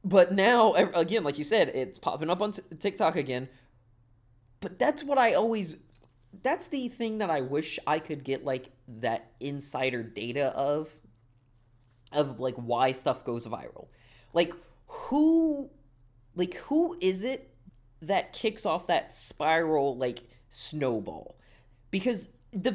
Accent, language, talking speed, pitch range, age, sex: American, English, 135 wpm, 130-210 Hz, 20-39, male